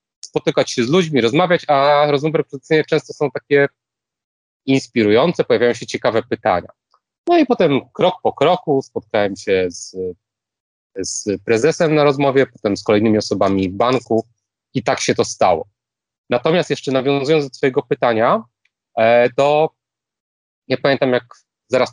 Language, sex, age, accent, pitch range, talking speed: Polish, male, 30-49, native, 105-140 Hz, 140 wpm